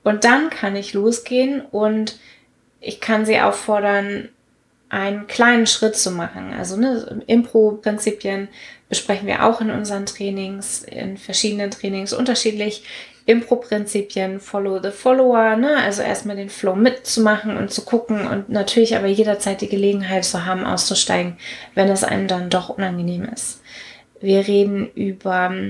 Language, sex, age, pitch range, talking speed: German, female, 20-39, 195-235 Hz, 135 wpm